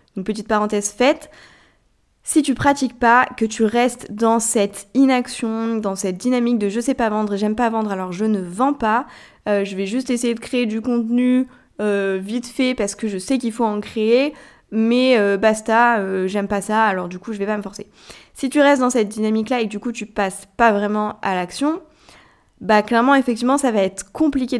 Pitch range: 210-255 Hz